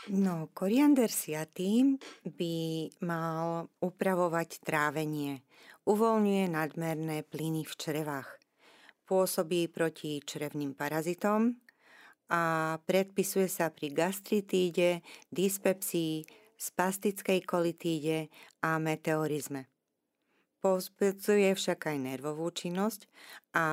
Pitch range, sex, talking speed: 155-190 Hz, female, 80 wpm